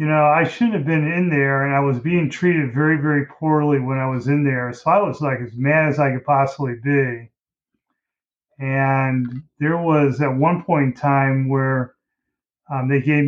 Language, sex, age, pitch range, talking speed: English, male, 30-49, 135-155 Hz, 200 wpm